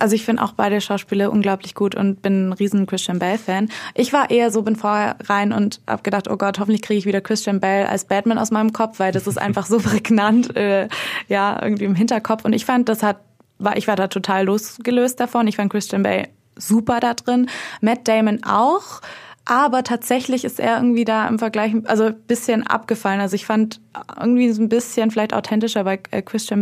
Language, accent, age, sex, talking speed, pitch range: German, German, 20-39, female, 205 wpm, 195-225 Hz